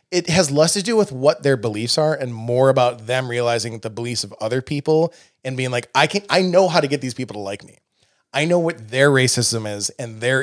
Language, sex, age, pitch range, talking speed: English, male, 20-39, 115-140 Hz, 245 wpm